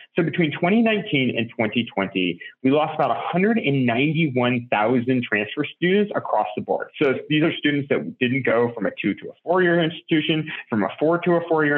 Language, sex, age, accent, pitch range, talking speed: English, male, 30-49, American, 130-185 Hz, 175 wpm